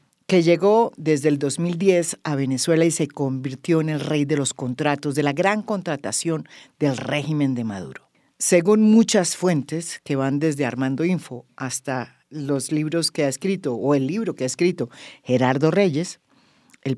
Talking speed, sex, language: 165 wpm, female, English